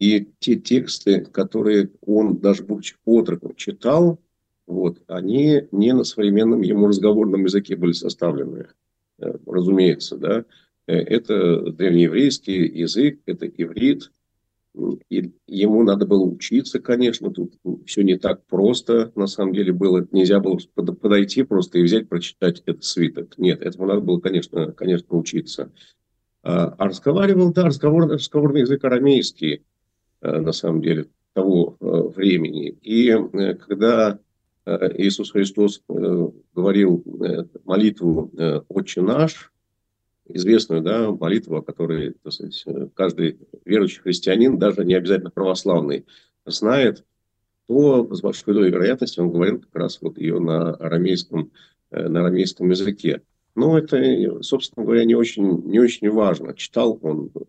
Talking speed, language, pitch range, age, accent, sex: 120 wpm, Russian, 90-110 Hz, 50-69, native, male